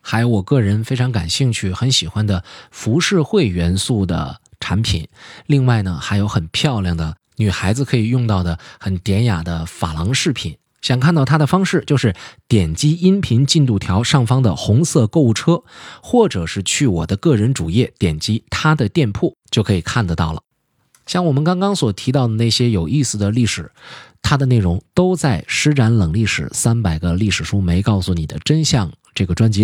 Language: Chinese